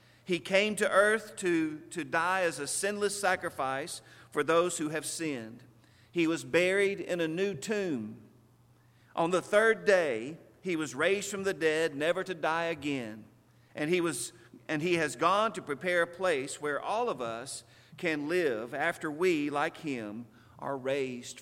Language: English